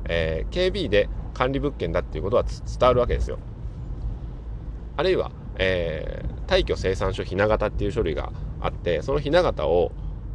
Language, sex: Japanese, male